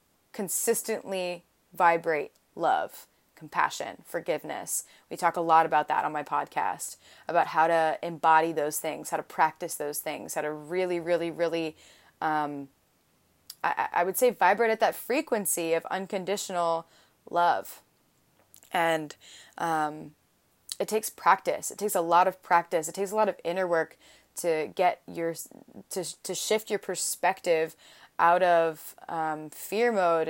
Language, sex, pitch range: English, female, 165-195 Hz